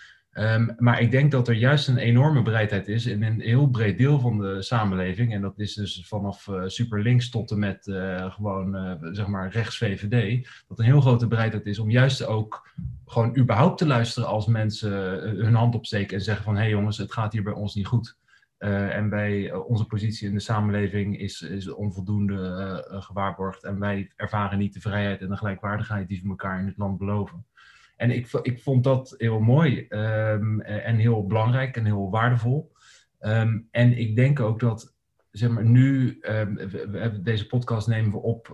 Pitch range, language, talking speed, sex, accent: 100-120 Hz, Dutch, 200 wpm, male, Dutch